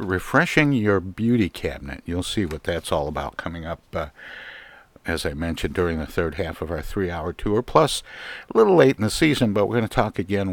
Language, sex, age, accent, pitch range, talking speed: English, male, 60-79, American, 80-100 Hz, 210 wpm